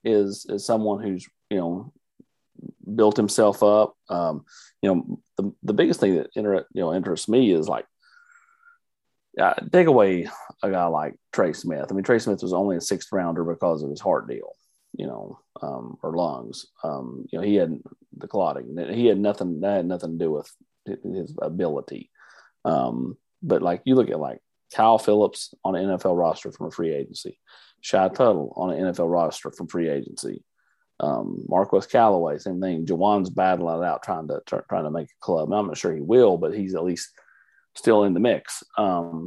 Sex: male